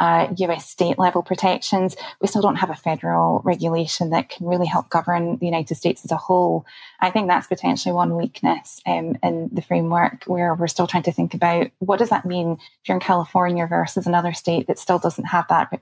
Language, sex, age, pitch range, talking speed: English, female, 20-39, 170-185 Hz, 210 wpm